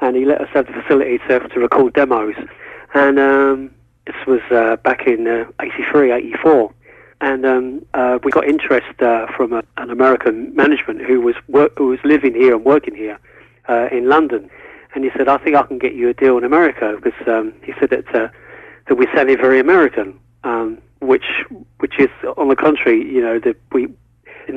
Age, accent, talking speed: 40-59, British, 200 wpm